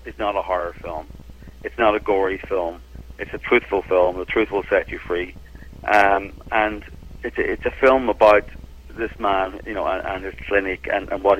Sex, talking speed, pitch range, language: male, 205 wpm, 85-110 Hz, English